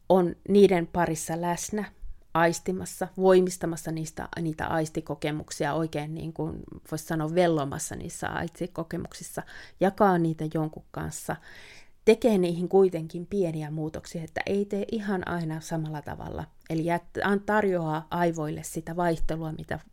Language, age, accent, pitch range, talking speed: Finnish, 30-49, native, 155-185 Hz, 115 wpm